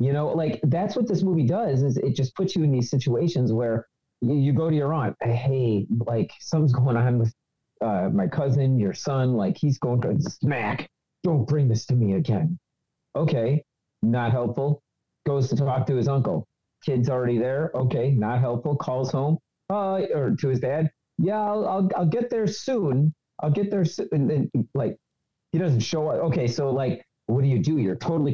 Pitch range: 125-155 Hz